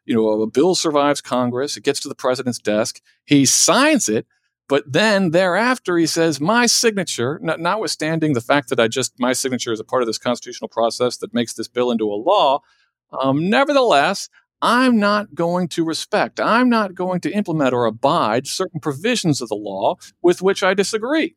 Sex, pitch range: male, 115-180 Hz